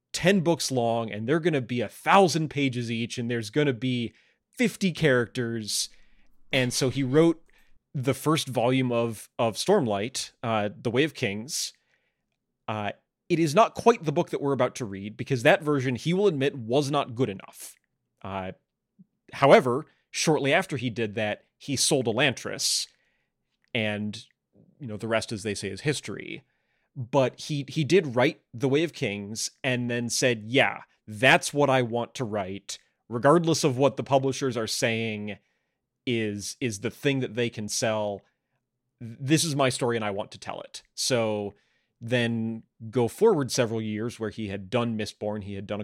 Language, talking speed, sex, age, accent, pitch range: English, 175 wpm, male, 30-49, American, 110-140 Hz